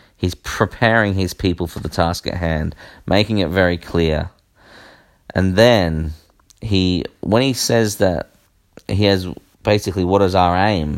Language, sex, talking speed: English, male, 150 wpm